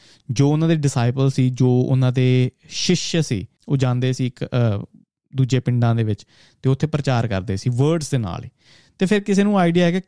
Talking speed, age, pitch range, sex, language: 190 wpm, 30-49, 120-155 Hz, male, Punjabi